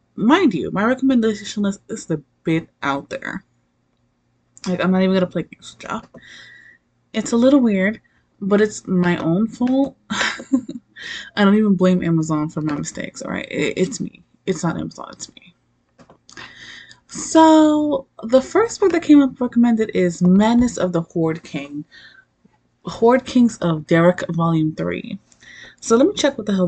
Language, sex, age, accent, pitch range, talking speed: English, female, 20-39, American, 160-225 Hz, 160 wpm